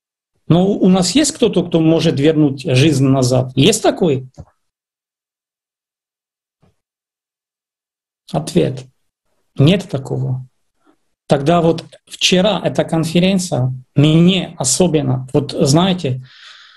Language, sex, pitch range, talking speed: Russian, male, 130-175 Hz, 85 wpm